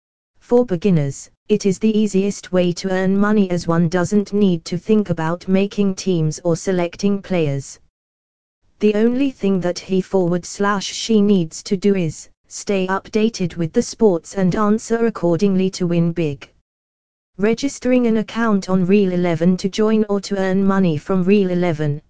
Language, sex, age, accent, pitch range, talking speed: English, female, 20-39, British, 170-210 Hz, 165 wpm